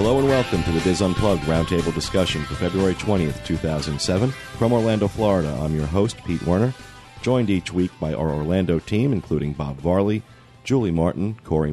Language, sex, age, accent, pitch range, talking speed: English, male, 40-59, American, 80-105 Hz, 175 wpm